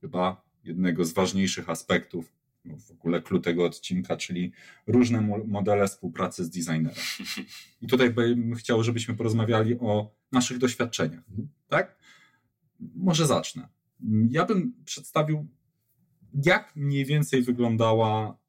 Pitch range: 105-140 Hz